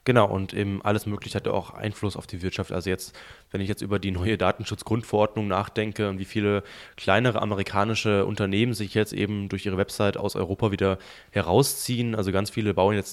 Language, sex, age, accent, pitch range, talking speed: German, male, 20-39, German, 95-110 Hz, 190 wpm